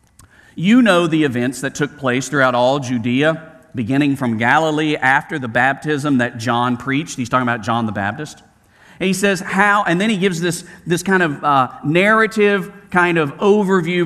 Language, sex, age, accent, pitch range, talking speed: English, male, 50-69, American, 135-190 Hz, 180 wpm